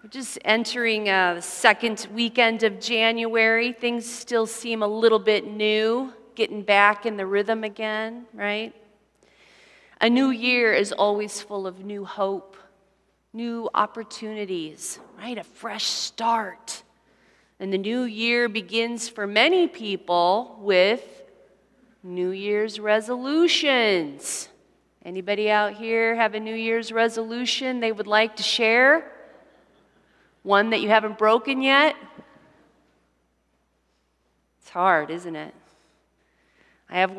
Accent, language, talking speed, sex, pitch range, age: American, English, 120 wpm, female, 190-235 Hz, 40-59